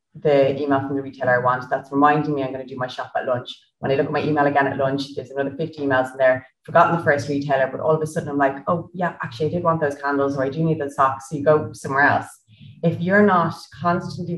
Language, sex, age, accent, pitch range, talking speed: English, female, 30-49, Irish, 140-190 Hz, 280 wpm